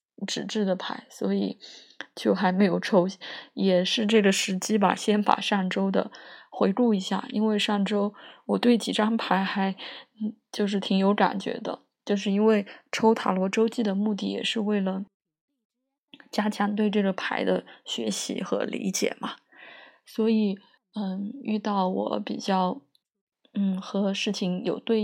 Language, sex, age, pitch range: Chinese, female, 20-39, 195-225 Hz